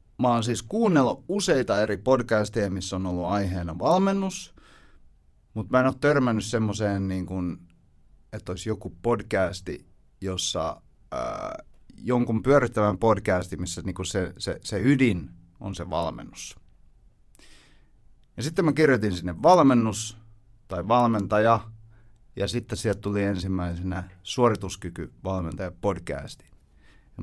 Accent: native